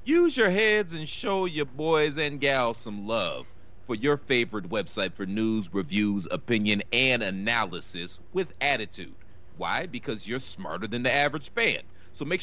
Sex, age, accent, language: male, 30-49, American, English